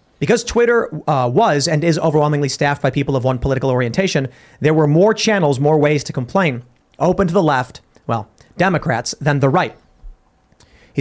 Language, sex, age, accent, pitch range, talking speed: English, male, 30-49, American, 140-180 Hz, 175 wpm